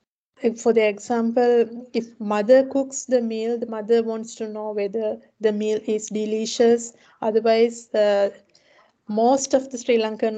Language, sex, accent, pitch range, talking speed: Finnish, female, Indian, 215-245 Hz, 145 wpm